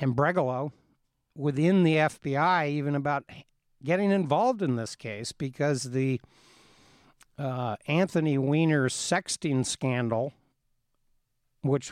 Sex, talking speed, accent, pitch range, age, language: male, 100 wpm, American, 130-155 Hz, 60-79, English